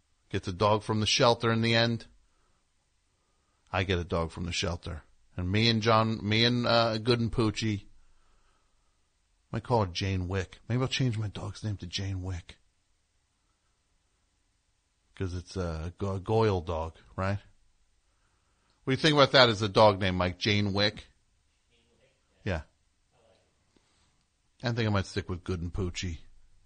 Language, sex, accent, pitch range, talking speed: English, male, American, 90-110 Hz, 160 wpm